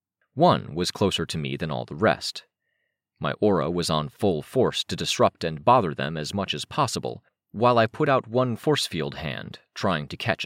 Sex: male